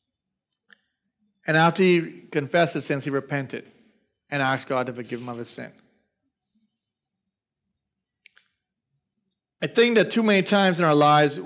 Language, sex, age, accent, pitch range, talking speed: English, male, 30-49, American, 145-210 Hz, 135 wpm